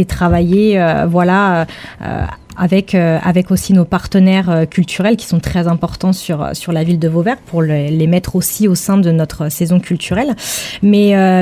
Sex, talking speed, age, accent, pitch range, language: female, 185 wpm, 20-39, French, 175-205 Hz, French